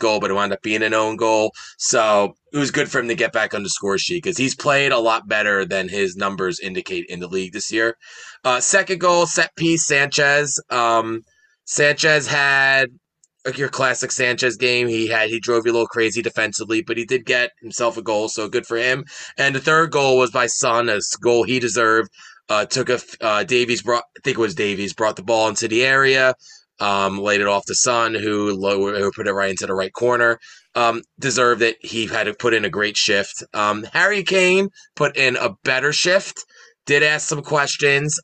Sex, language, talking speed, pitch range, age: male, English, 215 wpm, 110-145 Hz, 20-39